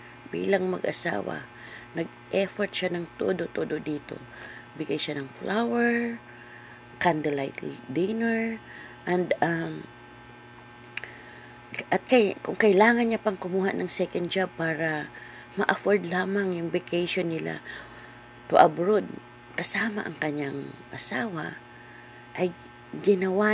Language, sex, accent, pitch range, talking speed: Filipino, female, native, 120-185 Hz, 100 wpm